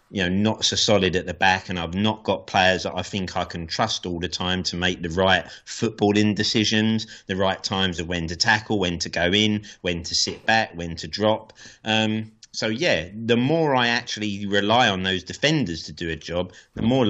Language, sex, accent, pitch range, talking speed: English, male, British, 90-110 Hz, 220 wpm